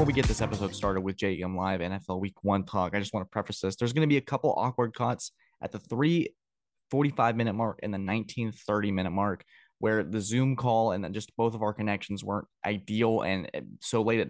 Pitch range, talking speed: 100-120 Hz, 225 wpm